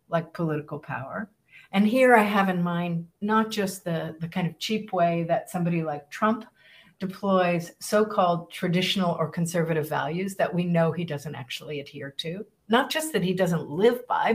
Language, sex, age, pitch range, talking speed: English, female, 50-69, 170-210 Hz, 175 wpm